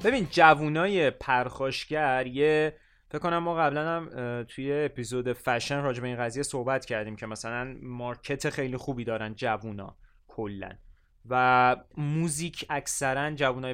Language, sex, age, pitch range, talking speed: Persian, male, 20-39, 120-150 Hz, 125 wpm